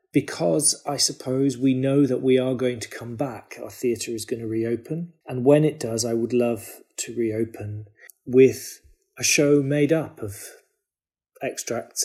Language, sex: English, male